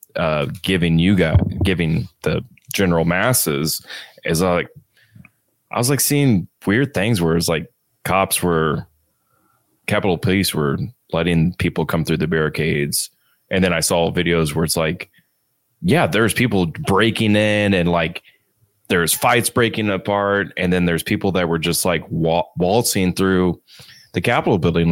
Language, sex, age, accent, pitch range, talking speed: English, male, 20-39, American, 80-95 Hz, 150 wpm